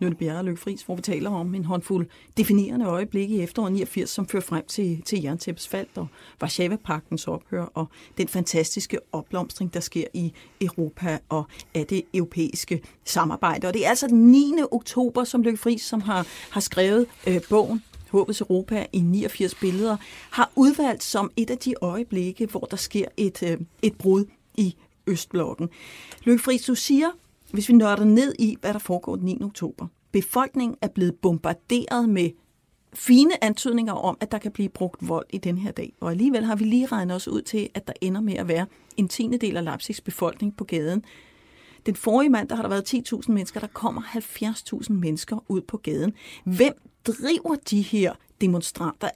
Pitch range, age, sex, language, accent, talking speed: 180-235 Hz, 40-59, female, Danish, native, 185 wpm